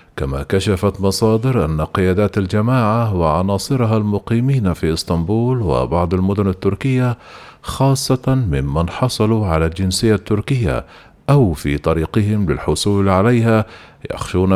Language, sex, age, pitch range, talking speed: Arabic, male, 40-59, 95-120 Hz, 105 wpm